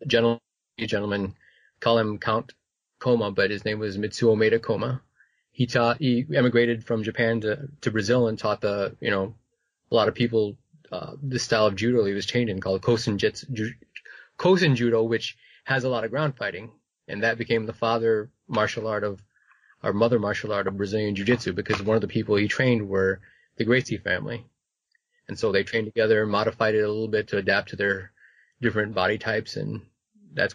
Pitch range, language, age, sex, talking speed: 105-125 Hz, English, 20-39, male, 195 wpm